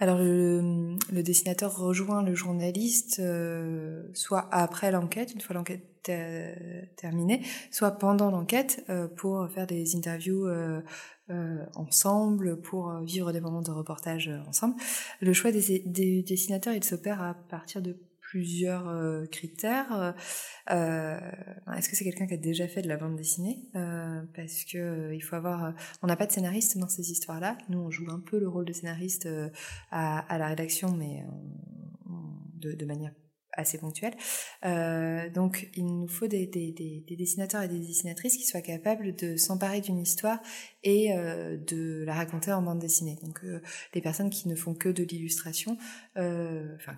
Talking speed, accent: 165 wpm, French